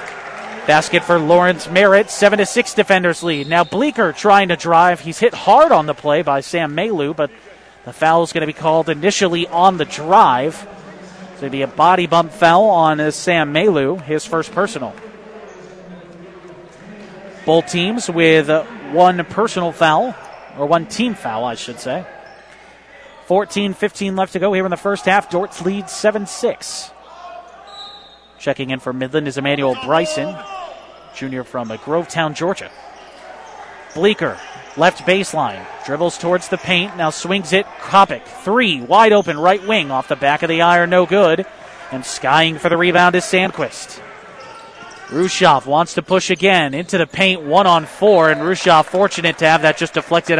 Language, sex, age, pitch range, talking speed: English, male, 30-49, 155-195 Hz, 160 wpm